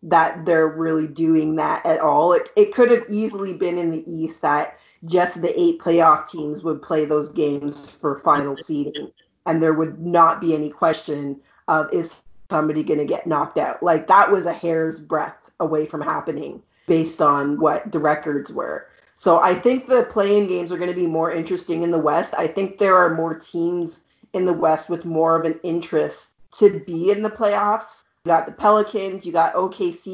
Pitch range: 155-185 Hz